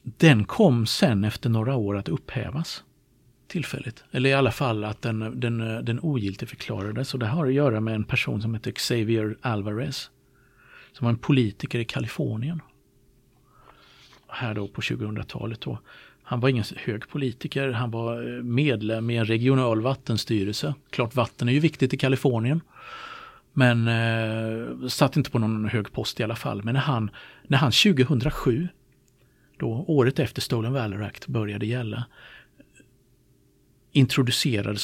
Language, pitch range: Swedish, 110-135 Hz